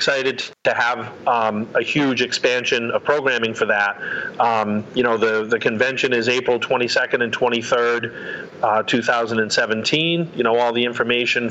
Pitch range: 115-130 Hz